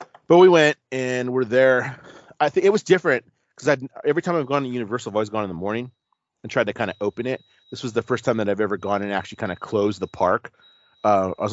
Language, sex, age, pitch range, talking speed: English, male, 30-49, 100-125 Hz, 260 wpm